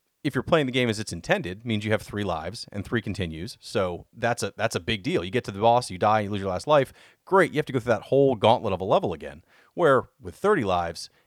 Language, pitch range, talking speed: English, 100-135 Hz, 275 wpm